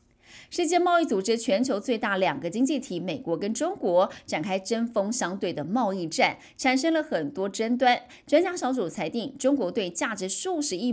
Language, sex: Chinese, female